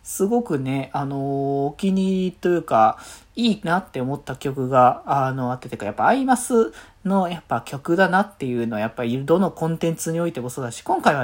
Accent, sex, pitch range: native, male, 140-220 Hz